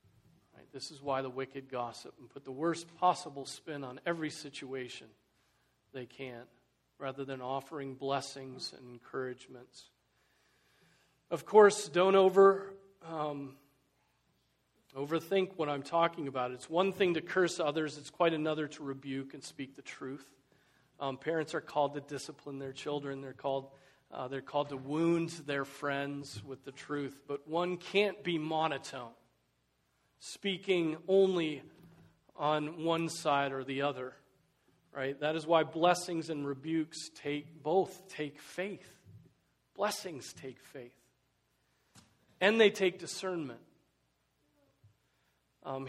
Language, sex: English, male